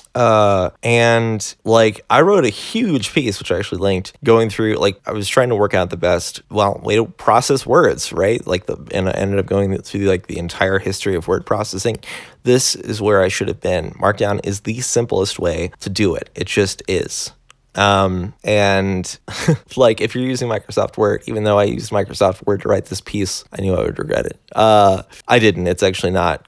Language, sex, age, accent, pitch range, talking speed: English, male, 20-39, American, 95-115 Hz, 210 wpm